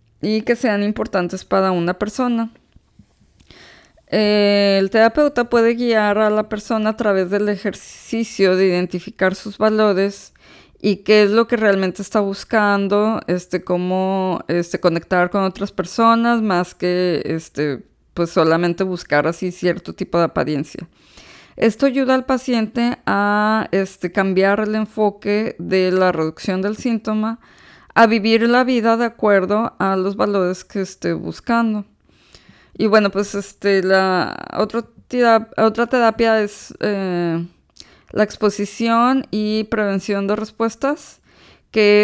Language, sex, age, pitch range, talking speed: Spanish, female, 20-39, 185-220 Hz, 130 wpm